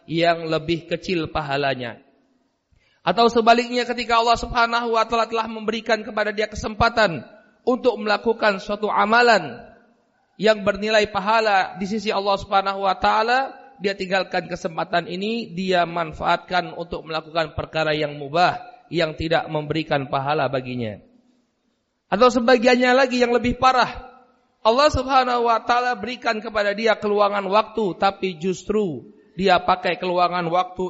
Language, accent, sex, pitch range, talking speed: Indonesian, native, male, 165-220 Hz, 130 wpm